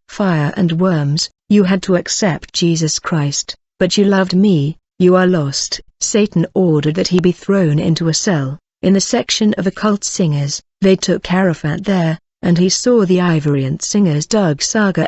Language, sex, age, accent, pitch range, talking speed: English, female, 50-69, British, 160-195 Hz, 175 wpm